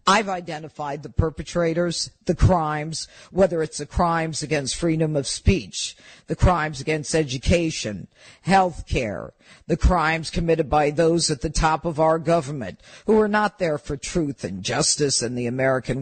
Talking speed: 155 wpm